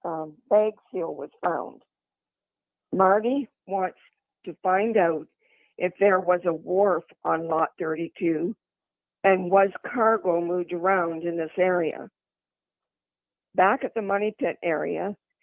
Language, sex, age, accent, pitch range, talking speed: English, female, 50-69, American, 175-205 Hz, 125 wpm